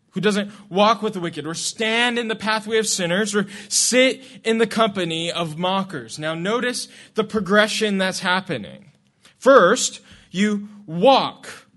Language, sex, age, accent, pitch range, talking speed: English, male, 20-39, American, 180-240 Hz, 150 wpm